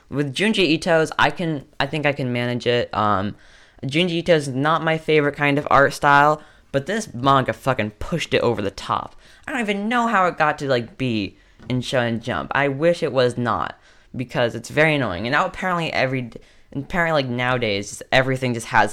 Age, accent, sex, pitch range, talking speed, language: 10-29, American, female, 110-145 Hz, 200 wpm, English